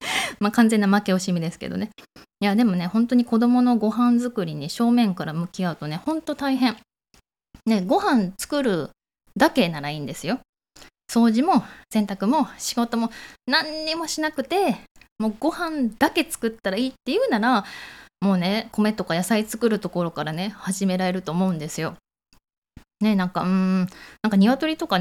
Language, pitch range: Japanese, 180-245 Hz